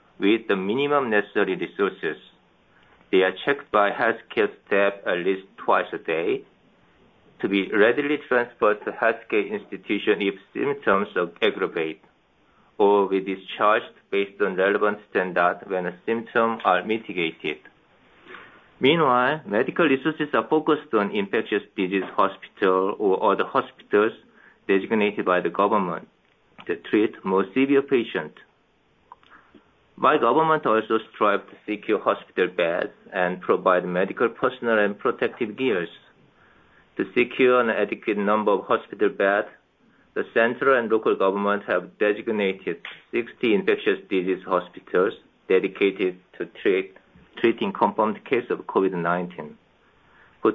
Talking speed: 120 wpm